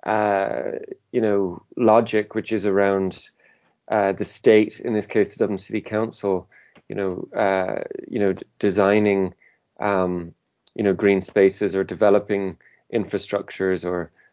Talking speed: 140 wpm